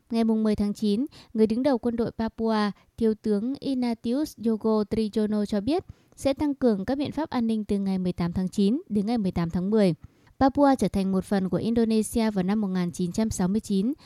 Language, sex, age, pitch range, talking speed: Vietnamese, female, 20-39, 195-245 Hz, 190 wpm